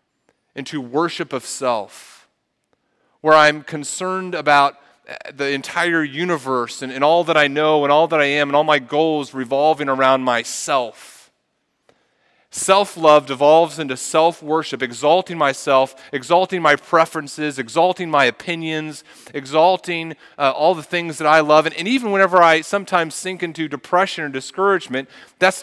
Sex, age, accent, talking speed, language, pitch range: male, 30-49, American, 145 wpm, English, 140-180 Hz